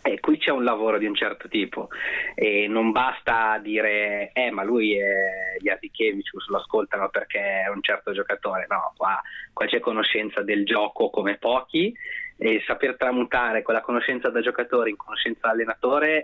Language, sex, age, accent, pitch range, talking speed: Italian, male, 20-39, native, 105-130 Hz, 175 wpm